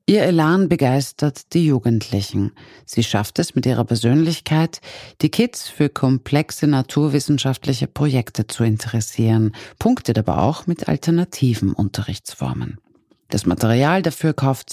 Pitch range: 115-160 Hz